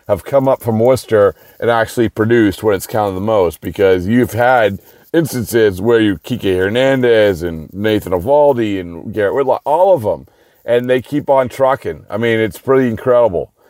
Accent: American